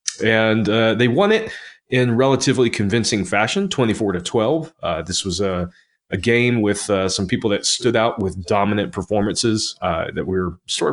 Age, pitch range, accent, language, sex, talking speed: 30-49, 95-125 Hz, American, English, male, 180 wpm